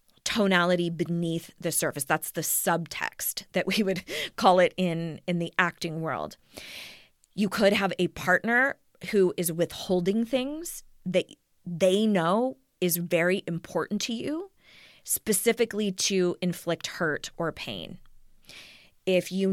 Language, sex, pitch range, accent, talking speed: English, female, 165-190 Hz, American, 130 wpm